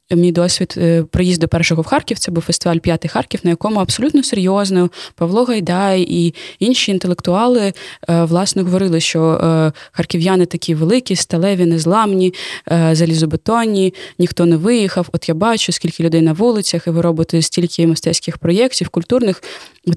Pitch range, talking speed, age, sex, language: 160-185 Hz, 140 wpm, 20-39, female, Ukrainian